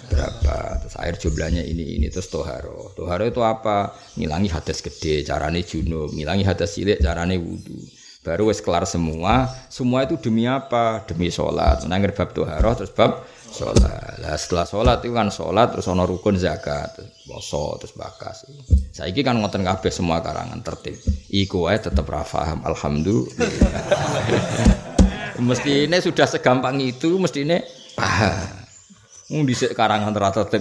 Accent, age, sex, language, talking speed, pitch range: native, 20-39, male, Indonesian, 150 wpm, 85-115 Hz